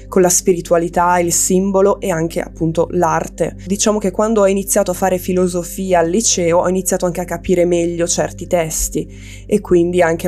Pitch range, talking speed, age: 165-190 Hz, 175 wpm, 20-39